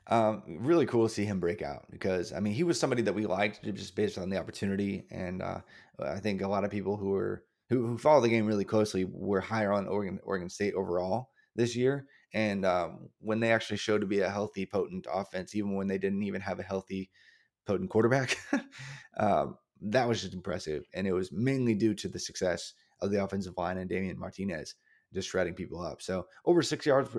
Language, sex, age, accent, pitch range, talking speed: English, male, 20-39, American, 95-115 Hz, 215 wpm